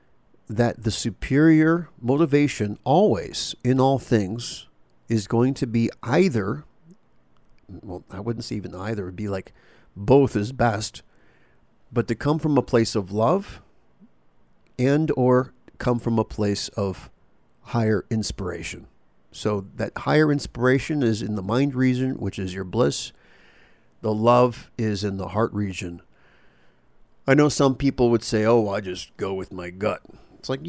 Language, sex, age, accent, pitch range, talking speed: English, male, 50-69, American, 100-125 Hz, 150 wpm